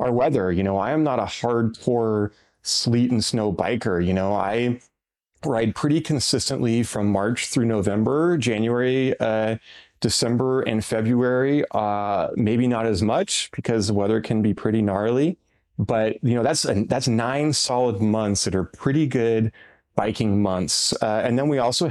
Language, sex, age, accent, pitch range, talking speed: English, male, 30-49, American, 100-120 Hz, 160 wpm